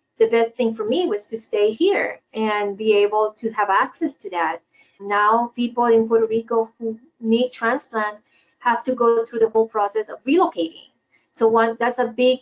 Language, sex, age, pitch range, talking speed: English, female, 30-49, 215-255 Hz, 190 wpm